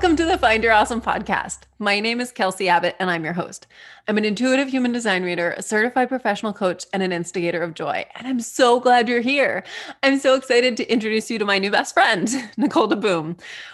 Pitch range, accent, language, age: 190-245 Hz, American, English, 30-49